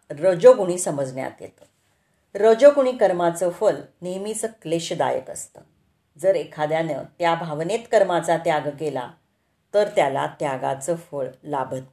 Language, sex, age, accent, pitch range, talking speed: Marathi, female, 40-59, native, 150-200 Hz, 105 wpm